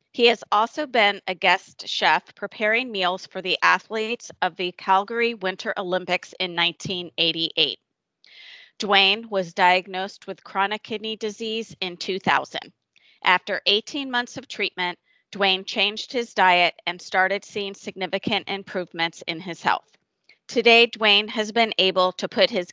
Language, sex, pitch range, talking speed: English, female, 185-230 Hz, 140 wpm